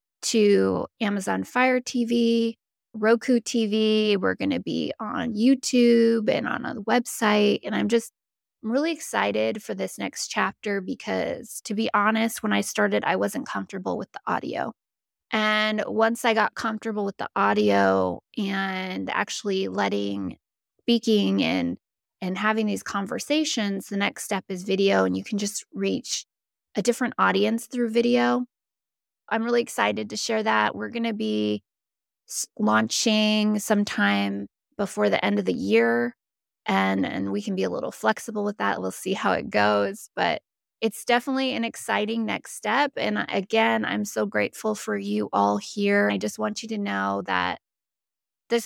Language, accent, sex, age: English, American, female, 20-39